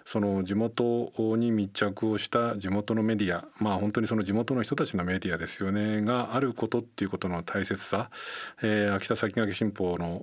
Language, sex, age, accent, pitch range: Japanese, male, 40-59, native, 95-120 Hz